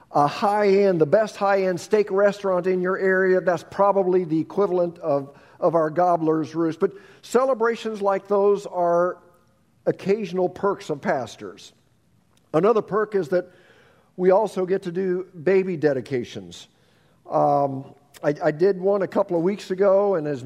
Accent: American